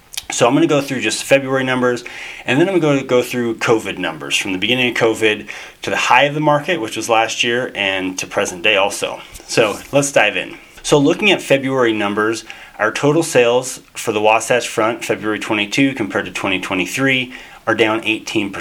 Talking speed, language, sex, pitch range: 190 wpm, English, male, 110-130 Hz